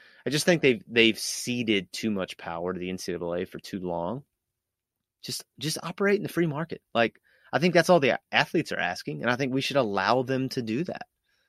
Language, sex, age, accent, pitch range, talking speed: English, male, 30-49, American, 95-155 Hz, 215 wpm